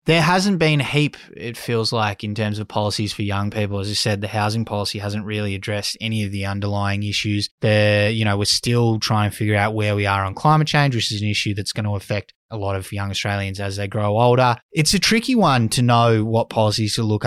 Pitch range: 105-115 Hz